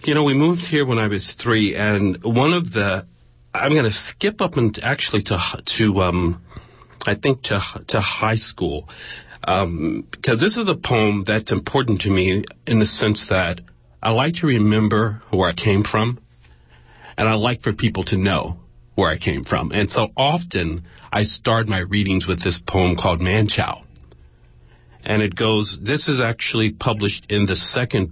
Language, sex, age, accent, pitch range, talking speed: English, male, 40-59, American, 95-125 Hz, 175 wpm